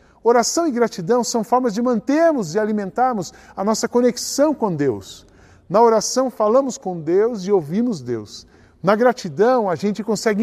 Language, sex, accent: Portuguese, male, Brazilian